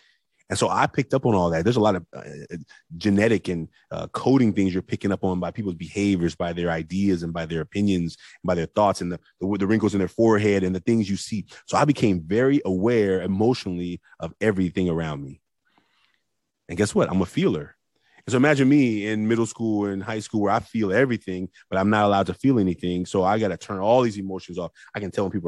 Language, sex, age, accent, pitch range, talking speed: English, male, 30-49, American, 90-115 Hz, 235 wpm